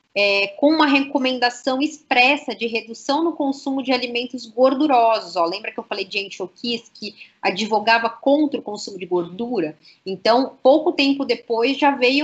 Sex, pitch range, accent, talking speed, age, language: female, 210-260 Hz, Brazilian, 145 wpm, 20-39, Portuguese